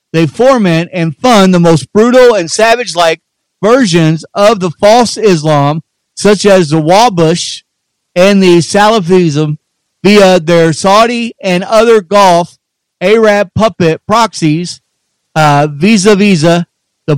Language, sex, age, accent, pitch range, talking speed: English, male, 40-59, American, 160-210 Hz, 115 wpm